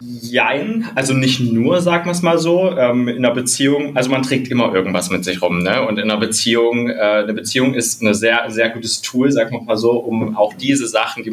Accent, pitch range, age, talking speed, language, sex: German, 110-130 Hz, 20-39, 220 wpm, German, male